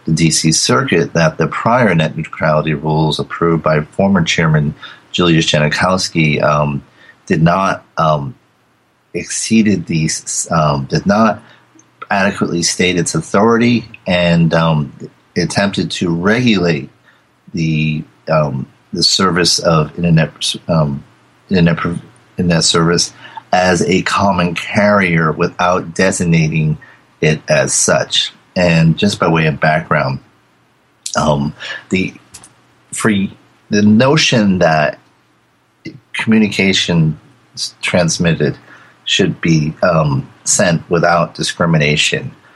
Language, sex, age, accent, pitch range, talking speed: English, male, 40-59, American, 80-100 Hz, 100 wpm